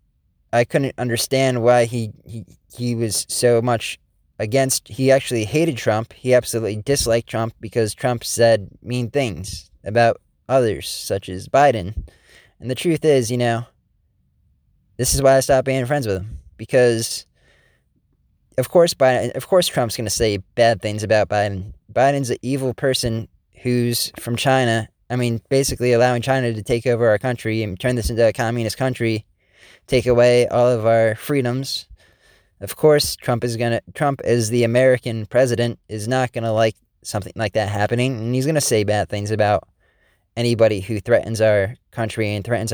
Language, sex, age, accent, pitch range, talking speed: English, male, 20-39, American, 105-125 Hz, 175 wpm